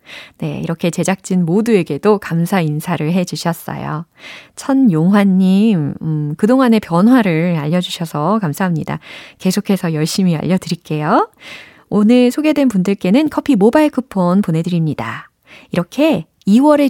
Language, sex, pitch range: Korean, female, 170-255 Hz